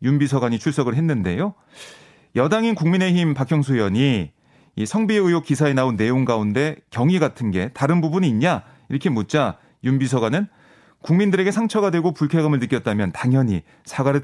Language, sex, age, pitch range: Korean, male, 30-49, 115-175 Hz